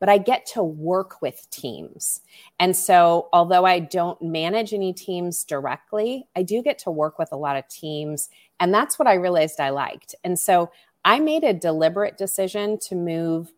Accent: American